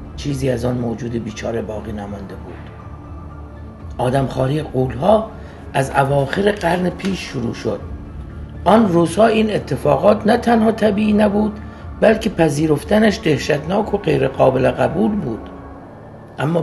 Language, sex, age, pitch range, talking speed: Persian, male, 60-79, 125-210 Hz, 125 wpm